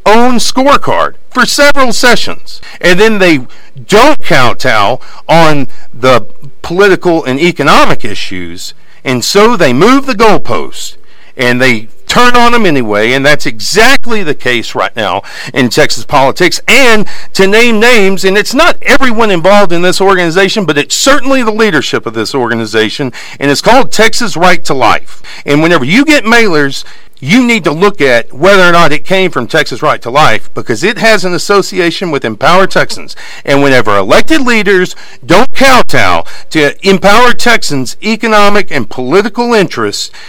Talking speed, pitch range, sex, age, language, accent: 160 wpm, 140-220 Hz, male, 50-69, English, American